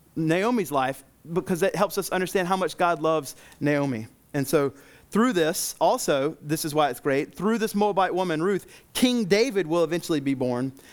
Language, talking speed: English, 180 wpm